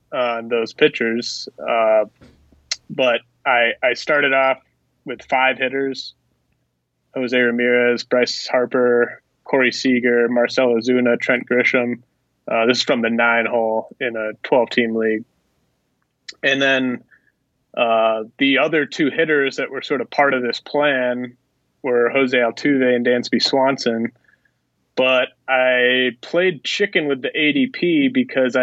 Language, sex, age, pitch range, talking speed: English, male, 20-39, 120-135 Hz, 130 wpm